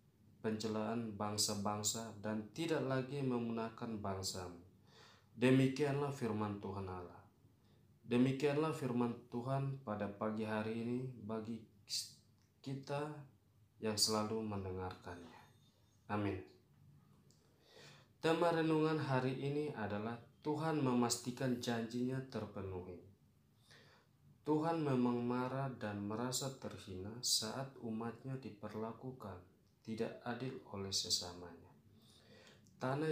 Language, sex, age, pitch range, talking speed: Indonesian, male, 20-39, 105-125 Hz, 85 wpm